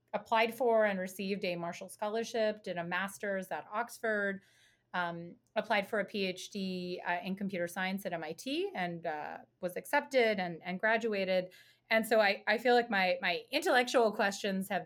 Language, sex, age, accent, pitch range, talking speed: English, female, 30-49, American, 175-215 Hz, 165 wpm